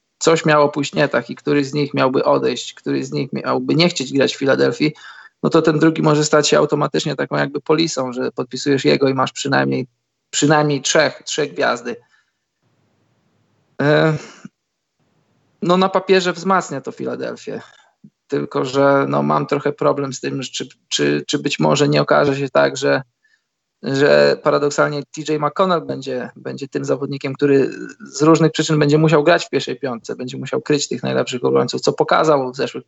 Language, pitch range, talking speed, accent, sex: Polish, 130-155 Hz, 170 wpm, native, male